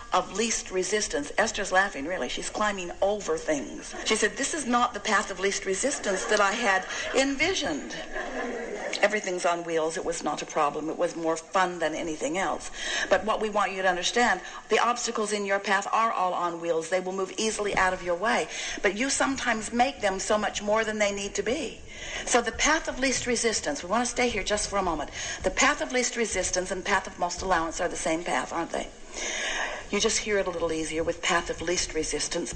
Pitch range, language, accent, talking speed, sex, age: 180-235 Hz, English, American, 220 wpm, female, 60-79